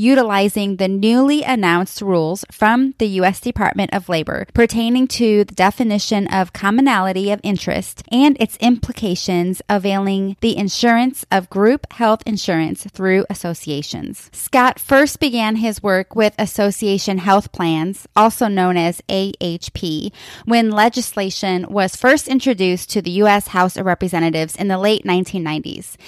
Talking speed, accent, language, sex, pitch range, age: 135 wpm, American, English, female, 190-240 Hz, 20-39